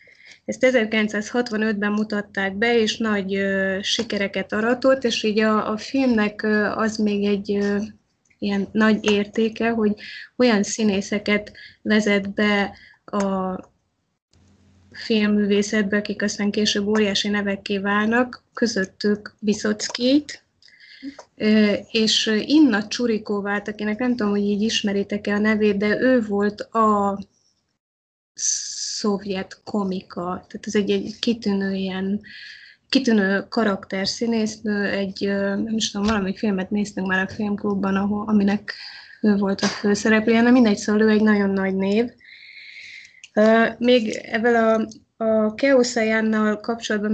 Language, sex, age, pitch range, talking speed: Hungarian, female, 20-39, 200-225 Hz, 115 wpm